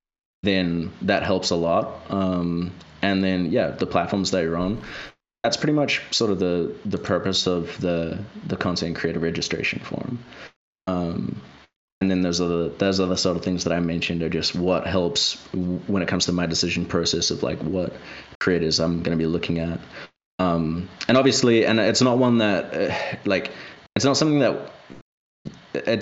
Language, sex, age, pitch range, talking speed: English, male, 20-39, 85-100 Hz, 180 wpm